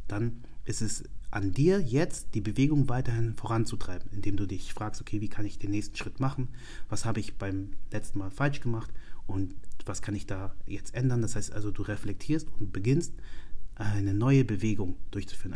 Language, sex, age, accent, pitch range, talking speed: German, male, 30-49, German, 100-120 Hz, 185 wpm